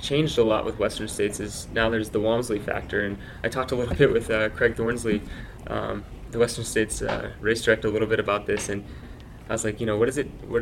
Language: English